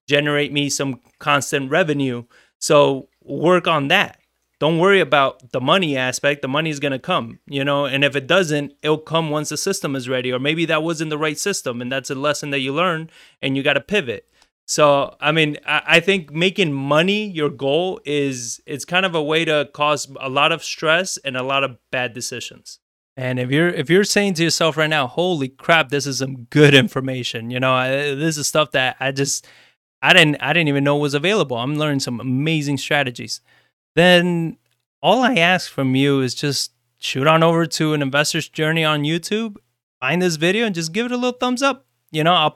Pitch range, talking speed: 135-175 Hz, 210 wpm